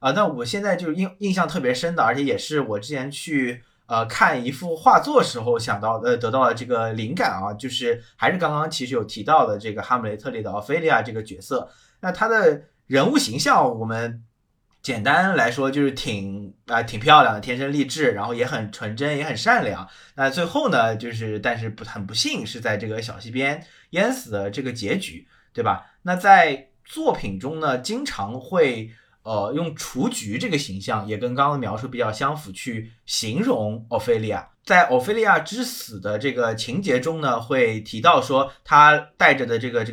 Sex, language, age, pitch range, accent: male, Chinese, 20-39, 110-150 Hz, native